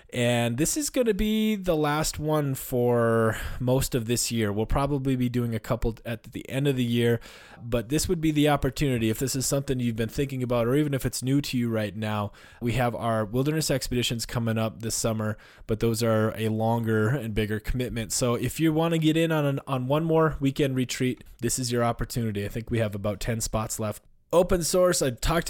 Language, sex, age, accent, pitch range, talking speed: English, male, 20-39, American, 110-140 Hz, 225 wpm